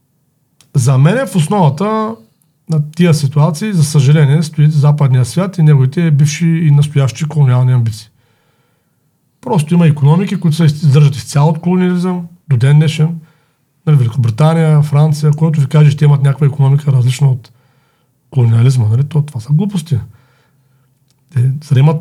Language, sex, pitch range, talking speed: Bulgarian, male, 130-155 Hz, 145 wpm